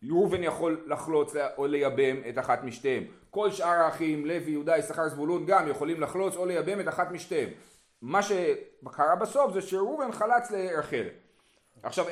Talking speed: 155 wpm